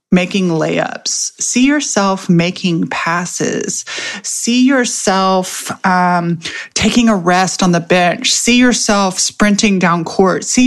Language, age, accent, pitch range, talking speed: English, 30-49, American, 185-250 Hz, 120 wpm